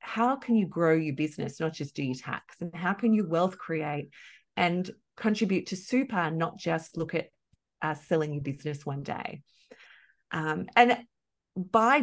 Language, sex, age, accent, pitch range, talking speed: English, female, 30-49, Australian, 155-205 Hz, 170 wpm